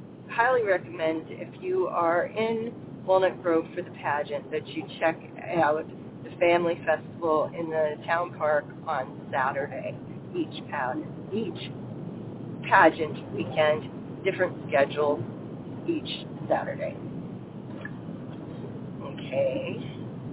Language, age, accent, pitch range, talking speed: English, 40-59, American, 155-185 Hz, 105 wpm